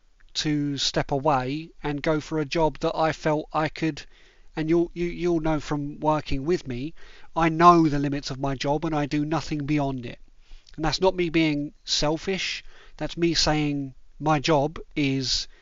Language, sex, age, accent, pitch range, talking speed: English, male, 30-49, British, 135-160 Hz, 180 wpm